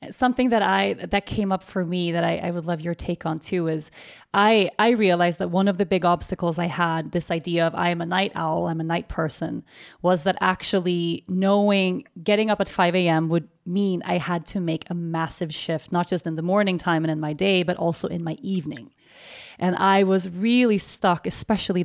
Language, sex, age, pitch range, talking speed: English, female, 30-49, 170-195 Hz, 220 wpm